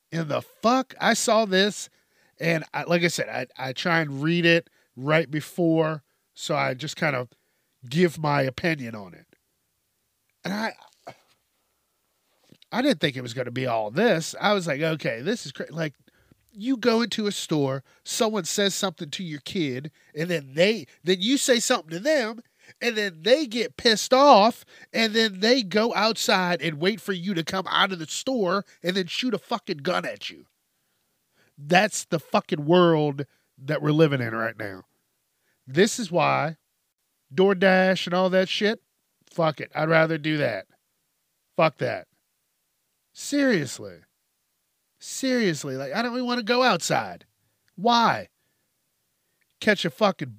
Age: 40-59